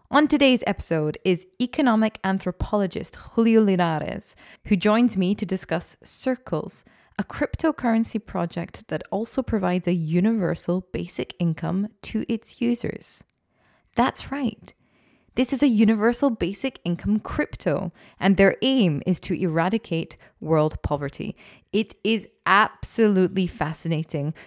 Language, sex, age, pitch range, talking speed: English, female, 20-39, 165-220 Hz, 120 wpm